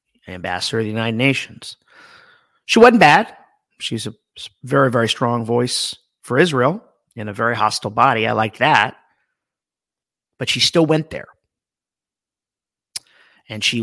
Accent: American